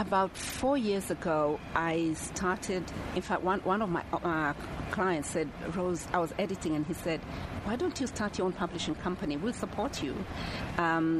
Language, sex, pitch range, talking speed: English, female, 165-195 Hz, 180 wpm